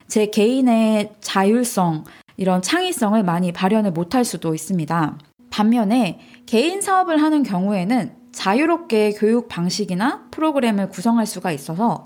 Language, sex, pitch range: Korean, female, 185-250 Hz